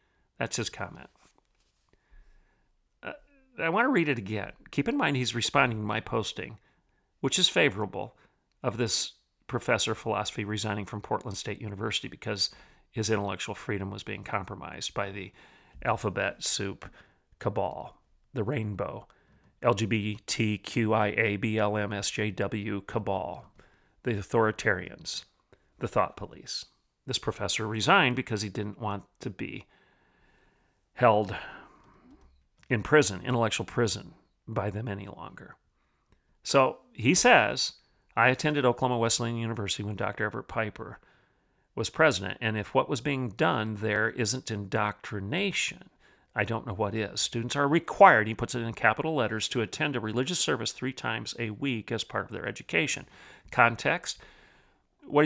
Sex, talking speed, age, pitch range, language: male, 130 wpm, 40-59, 105-125 Hz, English